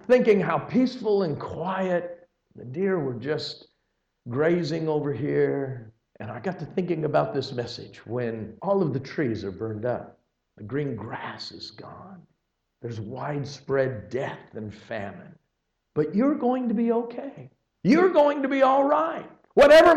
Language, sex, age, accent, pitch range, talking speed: English, male, 50-69, American, 175-270 Hz, 155 wpm